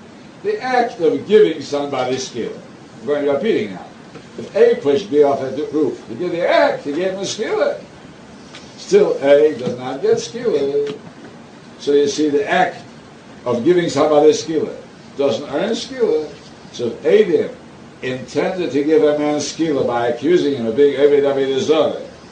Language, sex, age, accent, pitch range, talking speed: English, male, 60-79, American, 135-225 Hz, 175 wpm